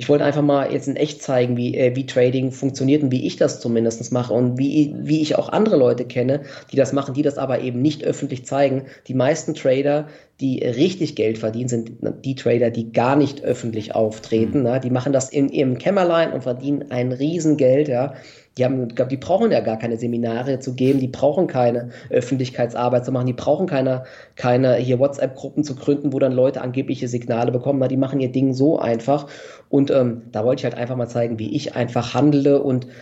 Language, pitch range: German, 125-140 Hz